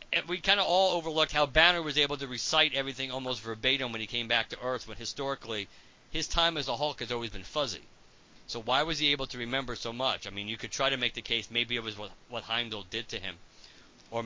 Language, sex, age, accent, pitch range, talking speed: English, male, 50-69, American, 115-150 Hz, 250 wpm